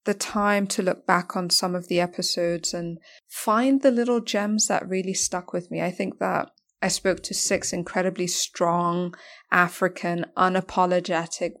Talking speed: 160 wpm